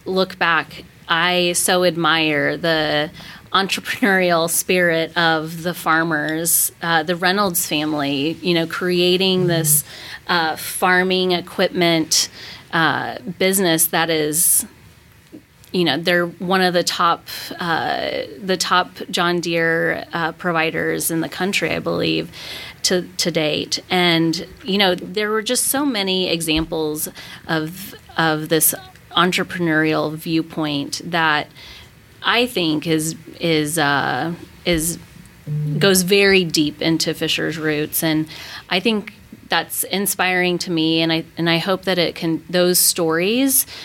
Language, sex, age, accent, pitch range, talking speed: English, female, 30-49, American, 160-180 Hz, 125 wpm